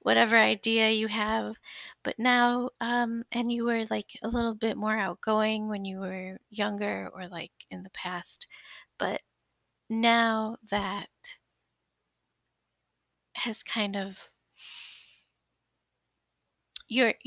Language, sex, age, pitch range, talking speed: English, female, 30-49, 195-240 Hz, 110 wpm